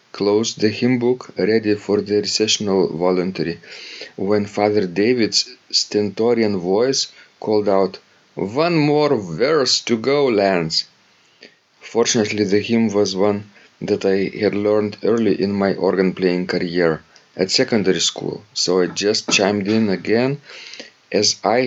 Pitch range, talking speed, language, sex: 95-110 Hz, 135 wpm, English, male